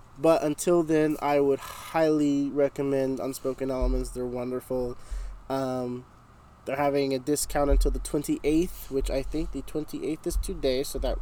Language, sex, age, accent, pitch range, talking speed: English, male, 20-39, American, 130-155 Hz, 150 wpm